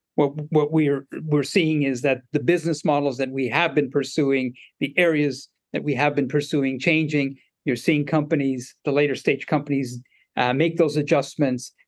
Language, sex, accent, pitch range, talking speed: English, male, American, 130-155 Hz, 170 wpm